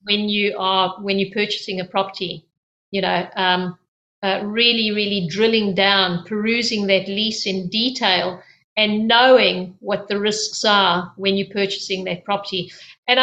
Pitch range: 195-225 Hz